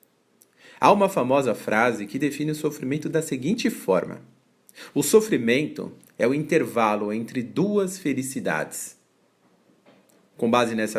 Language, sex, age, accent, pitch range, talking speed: Portuguese, male, 40-59, Brazilian, 115-165 Hz, 120 wpm